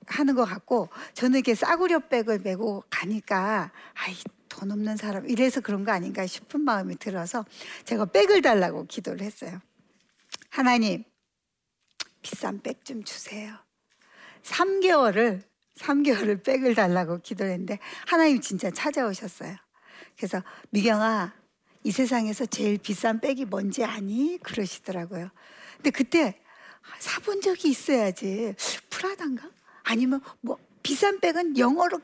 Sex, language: female, Korean